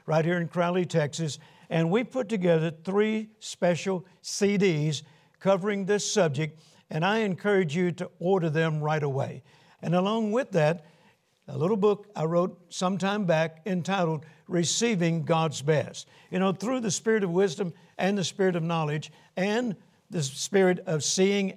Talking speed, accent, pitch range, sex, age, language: 160 wpm, American, 165-190 Hz, male, 60-79, English